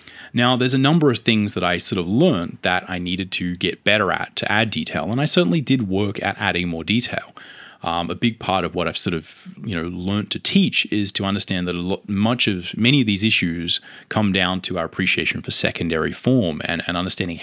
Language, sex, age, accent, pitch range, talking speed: English, male, 20-39, Australian, 90-115 Hz, 230 wpm